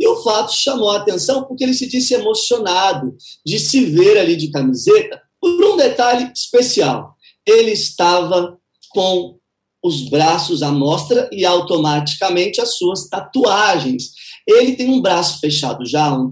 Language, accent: Portuguese, Brazilian